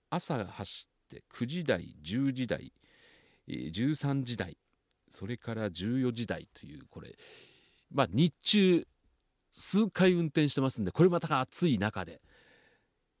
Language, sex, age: Japanese, male, 40-59